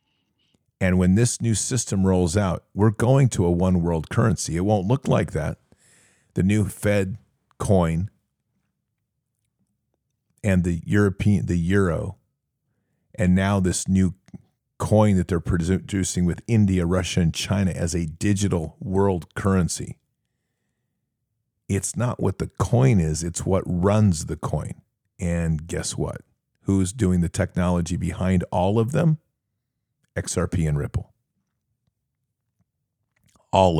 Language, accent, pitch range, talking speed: English, American, 90-115 Hz, 125 wpm